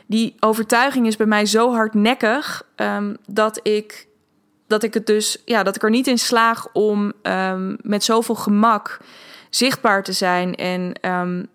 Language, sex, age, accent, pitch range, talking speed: Dutch, female, 20-39, Dutch, 190-225 Hz, 160 wpm